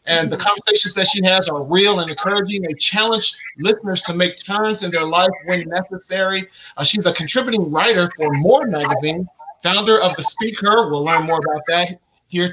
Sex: male